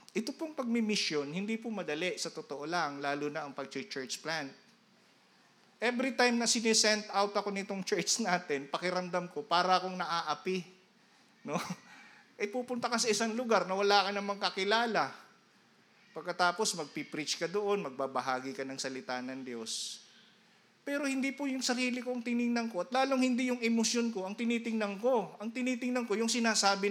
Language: Filipino